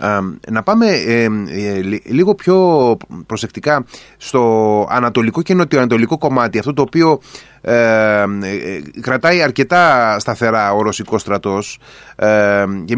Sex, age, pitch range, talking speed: male, 30-49, 110-160 Hz, 110 wpm